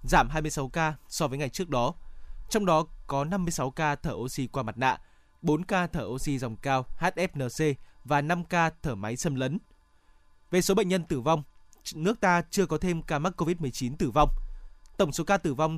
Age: 20-39